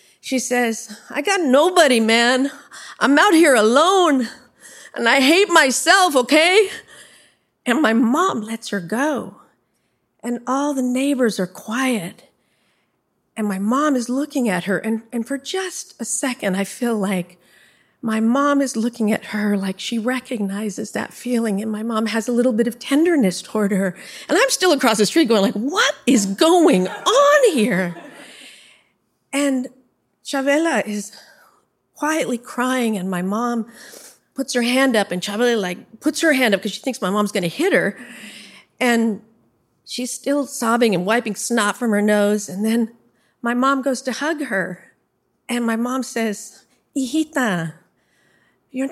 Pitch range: 210-275 Hz